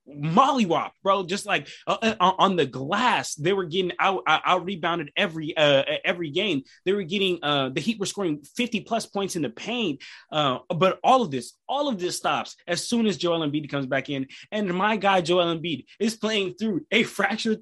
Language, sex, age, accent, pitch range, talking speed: English, male, 20-39, American, 155-205 Hz, 200 wpm